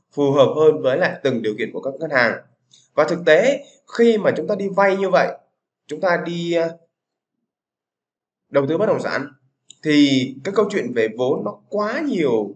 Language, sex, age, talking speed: Vietnamese, male, 20-39, 190 wpm